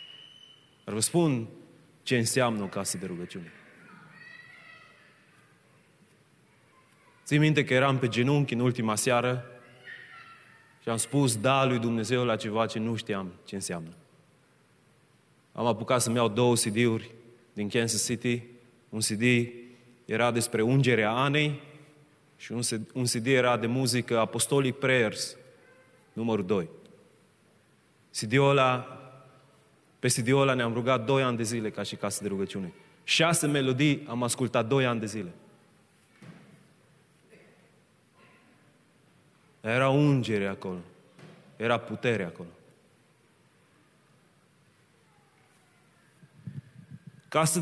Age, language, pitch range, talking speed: 30-49, Romanian, 115-145 Hz, 105 wpm